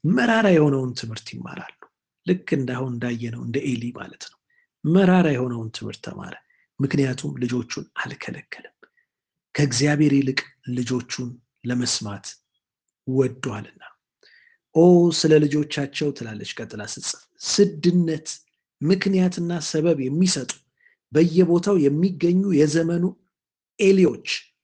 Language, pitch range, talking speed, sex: Amharic, 140-180 Hz, 90 wpm, male